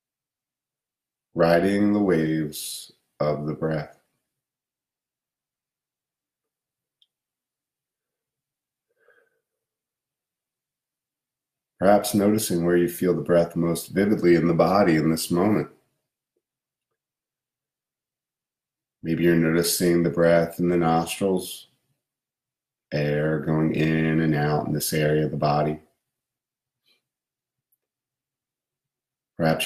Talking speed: 85 wpm